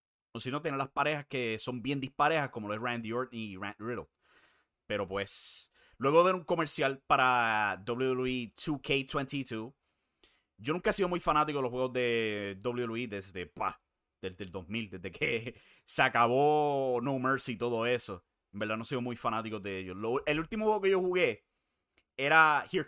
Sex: male